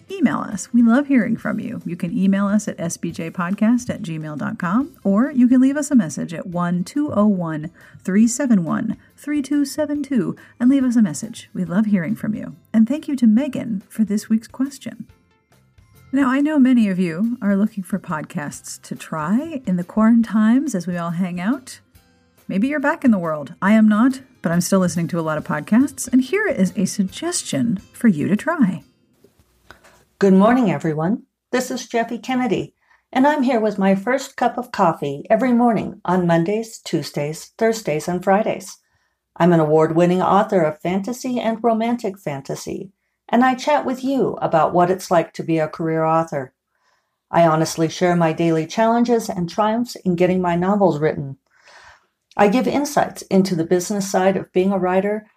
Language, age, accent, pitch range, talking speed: English, 40-59, American, 175-240 Hz, 180 wpm